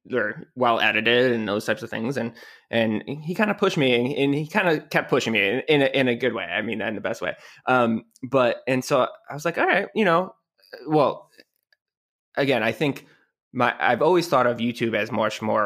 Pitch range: 110-135 Hz